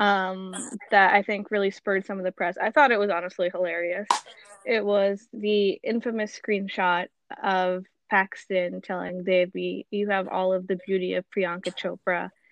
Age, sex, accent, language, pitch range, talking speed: 10-29, female, American, English, 185-240 Hz, 165 wpm